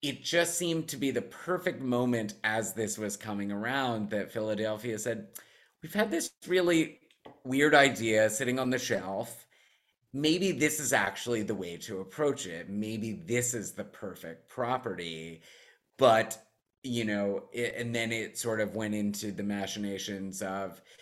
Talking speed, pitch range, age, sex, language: 155 wpm, 100-130 Hz, 30-49, male, English